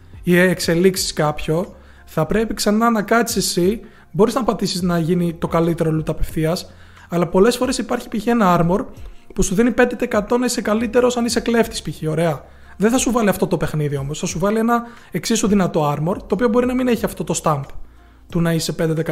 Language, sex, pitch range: Greek, male, 165-215 Hz